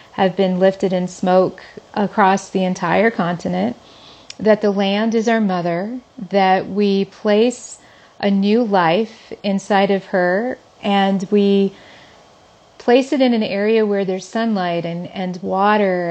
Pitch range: 190-230 Hz